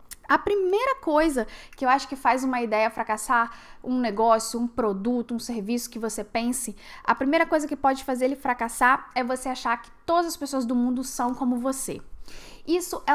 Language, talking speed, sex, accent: Portuguese, 190 wpm, female, Brazilian